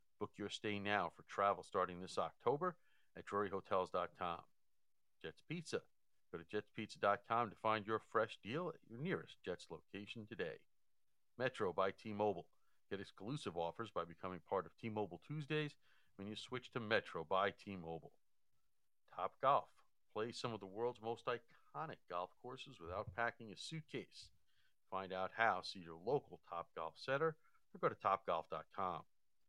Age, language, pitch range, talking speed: 50-69, English, 95-115 Hz, 150 wpm